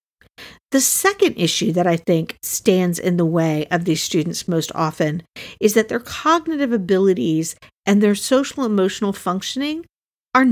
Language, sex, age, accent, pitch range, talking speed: English, female, 50-69, American, 190-240 Hz, 145 wpm